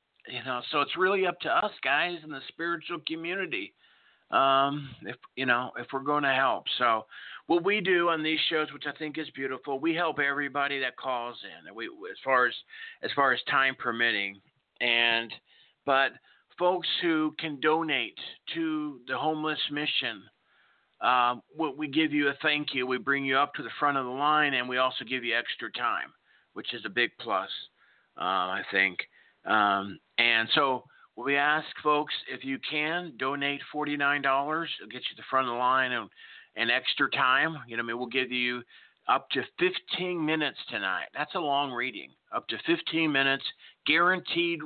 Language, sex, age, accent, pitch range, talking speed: English, male, 50-69, American, 125-155 Hz, 180 wpm